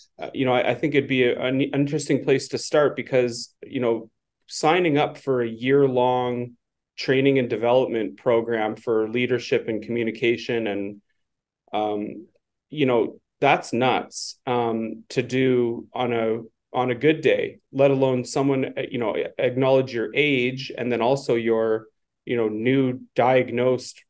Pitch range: 115-130 Hz